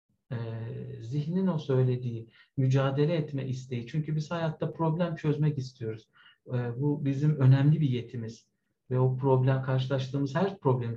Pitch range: 125-150 Hz